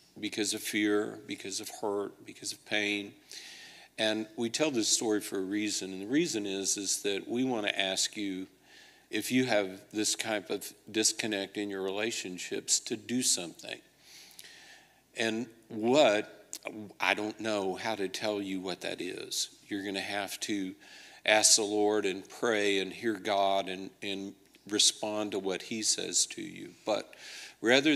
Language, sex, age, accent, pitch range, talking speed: English, male, 50-69, American, 95-110 Hz, 160 wpm